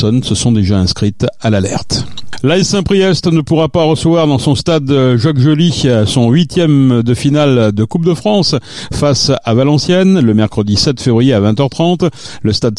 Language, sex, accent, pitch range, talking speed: French, male, French, 110-145 Hz, 170 wpm